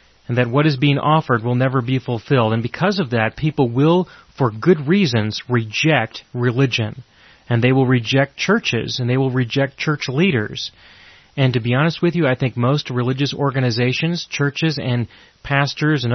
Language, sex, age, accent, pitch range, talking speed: English, male, 30-49, American, 115-140 Hz, 175 wpm